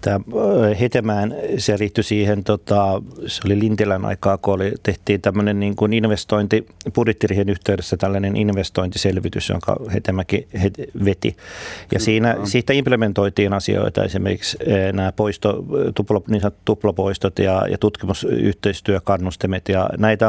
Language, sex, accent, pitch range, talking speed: Finnish, male, native, 95-110 Hz, 105 wpm